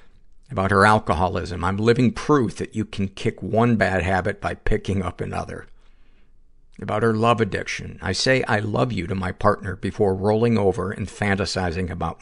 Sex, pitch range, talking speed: male, 90-110 Hz, 170 wpm